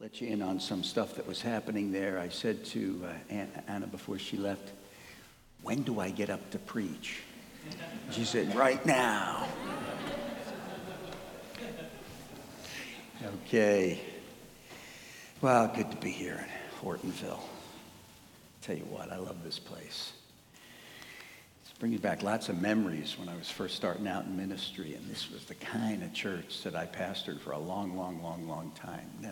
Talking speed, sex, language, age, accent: 150 wpm, male, English, 60-79, American